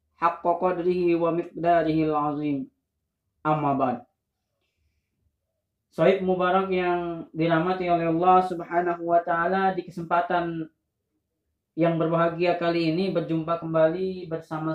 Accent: native